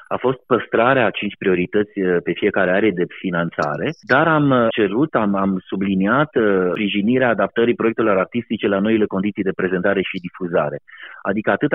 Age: 30-49